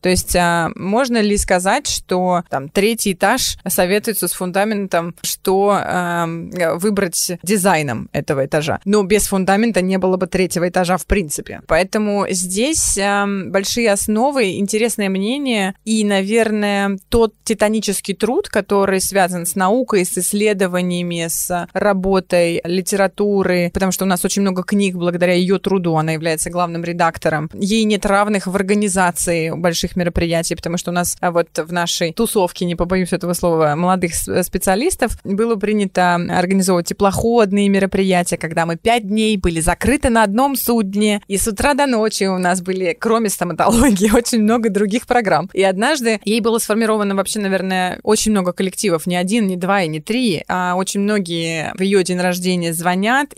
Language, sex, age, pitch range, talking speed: Russian, female, 20-39, 175-210 Hz, 155 wpm